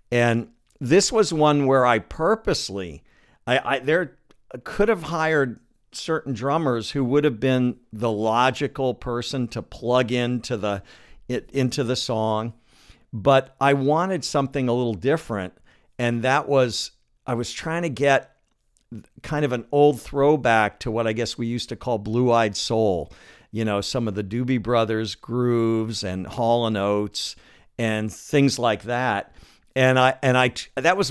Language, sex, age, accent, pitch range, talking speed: English, male, 50-69, American, 115-140 Hz, 160 wpm